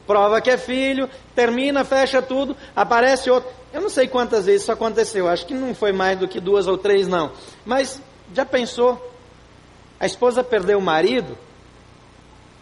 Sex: male